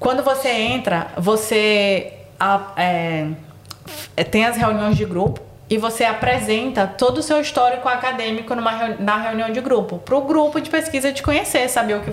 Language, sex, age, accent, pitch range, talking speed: Portuguese, female, 20-39, Brazilian, 200-260 Hz, 155 wpm